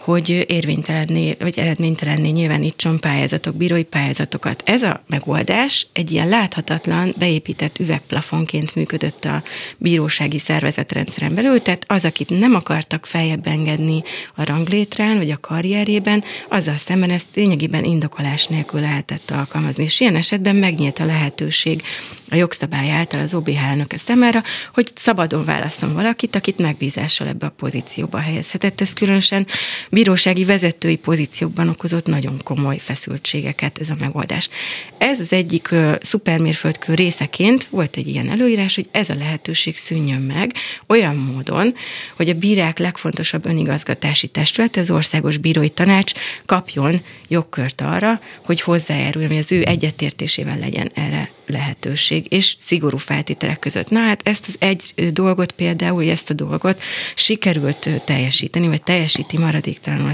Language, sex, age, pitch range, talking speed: Hungarian, female, 30-49, 155-190 Hz, 135 wpm